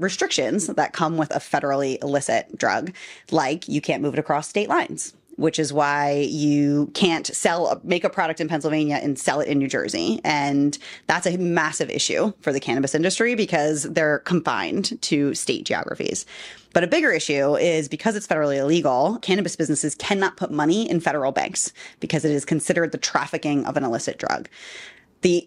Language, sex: English, female